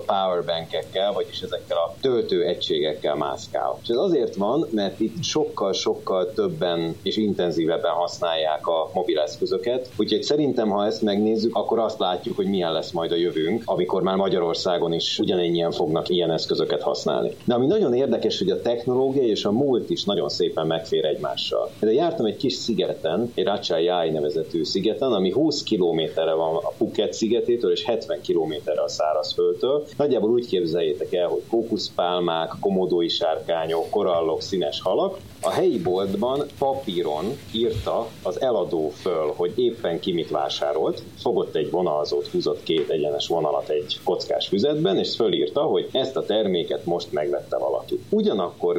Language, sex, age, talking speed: Hungarian, male, 30-49, 150 wpm